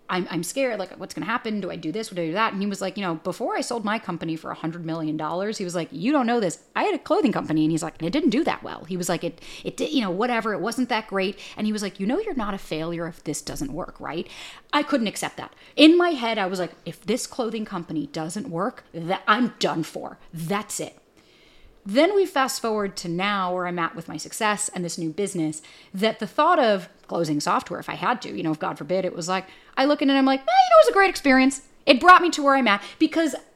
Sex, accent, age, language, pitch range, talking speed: female, American, 30-49, English, 180-260 Hz, 280 wpm